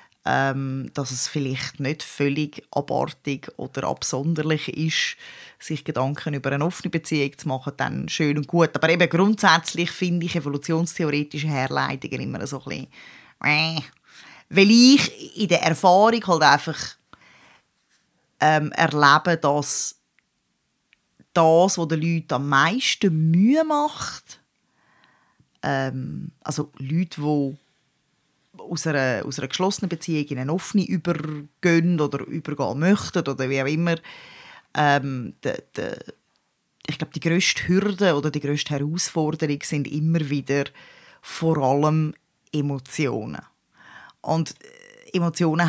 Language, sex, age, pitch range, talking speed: German, female, 20-39, 145-170 Hz, 120 wpm